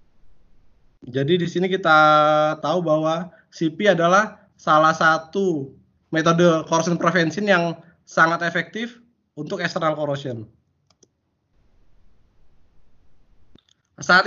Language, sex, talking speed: English, male, 85 wpm